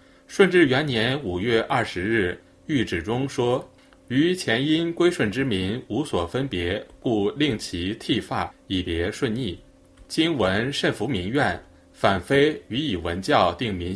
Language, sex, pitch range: Chinese, male, 90-135 Hz